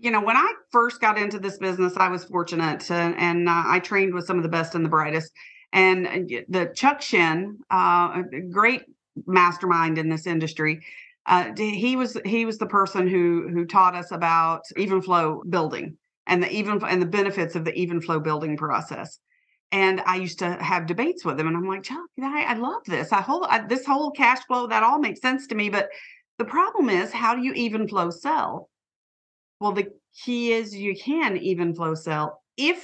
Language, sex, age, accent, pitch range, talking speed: English, female, 40-59, American, 175-230 Hz, 200 wpm